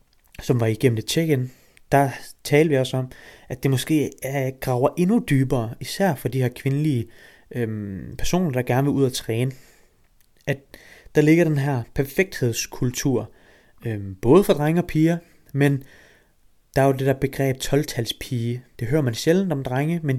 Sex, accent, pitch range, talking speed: male, native, 125-150 Hz, 160 wpm